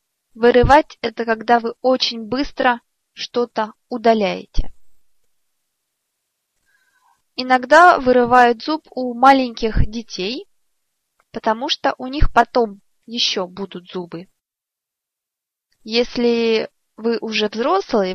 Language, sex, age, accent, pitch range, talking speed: Russian, female, 20-39, native, 220-260 Hz, 85 wpm